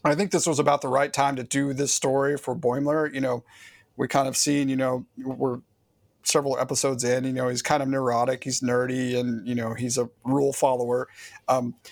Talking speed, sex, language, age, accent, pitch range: 210 wpm, male, English, 40-59, American, 130-165 Hz